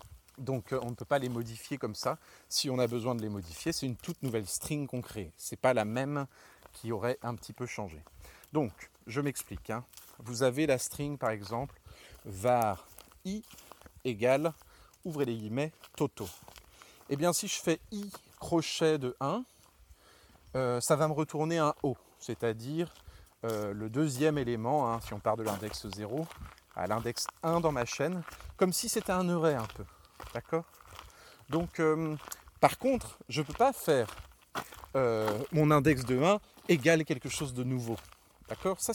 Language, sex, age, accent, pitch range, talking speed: French, male, 30-49, French, 110-155 Hz, 175 wpm